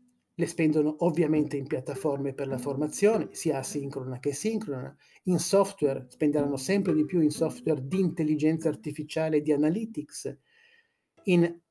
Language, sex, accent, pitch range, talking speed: Italian, male, native, 140-175 Hz, 140 wpm